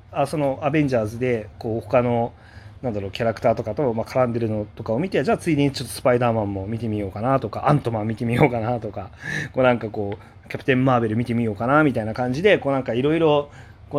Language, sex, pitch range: Japanese, male, 105-135 Hz